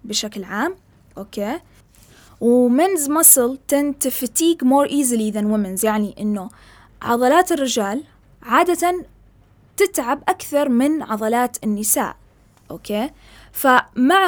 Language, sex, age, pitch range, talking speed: Arabic, female, 20-39, 215-280 Hz, 115 wpm